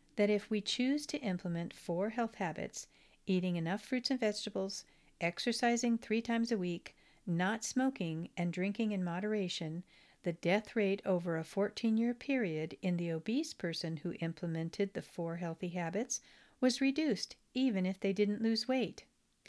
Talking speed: 155 wpm